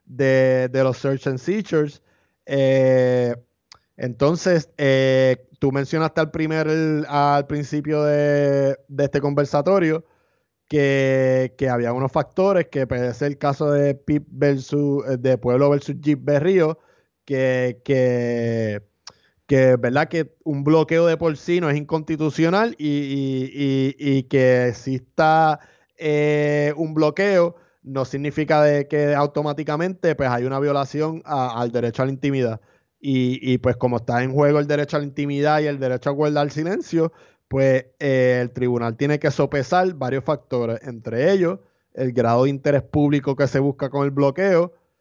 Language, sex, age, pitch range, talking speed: Spanish, male, 20-39, 130-150 Hz, 150 wpm